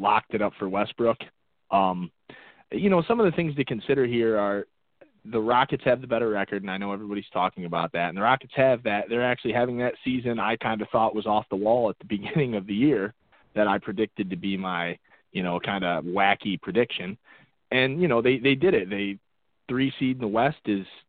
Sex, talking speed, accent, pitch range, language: male, 225 wpm, American, 100-140 Hz, English